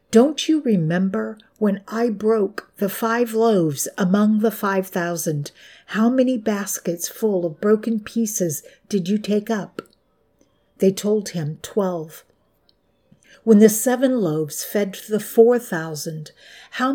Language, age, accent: English, 50-69, American